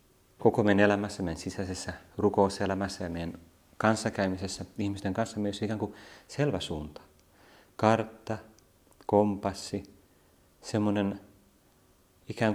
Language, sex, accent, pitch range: Finnish, male, native, 85-105 Hz